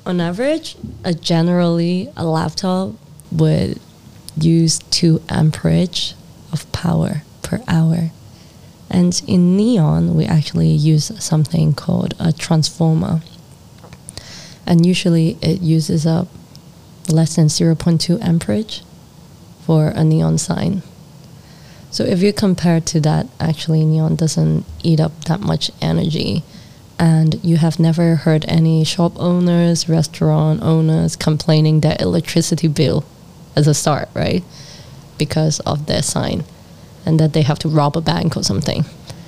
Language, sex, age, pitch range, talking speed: English, female, 20-39, 155-170 Hz, 130 wpm